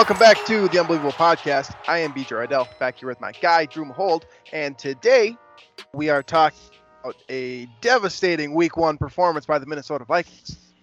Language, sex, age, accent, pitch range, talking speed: English, male, 20-39, American, 145-185 Hz, 175 wpm